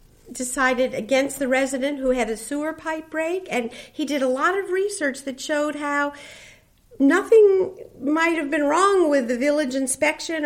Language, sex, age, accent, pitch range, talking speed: English, female, 50-69, American, 240-310 Hz, 165 wpm